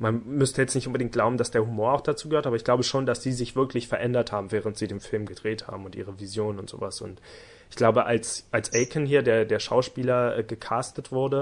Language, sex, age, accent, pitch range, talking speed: German, male, 20-39, German, 110-130 Hz, 235 wpm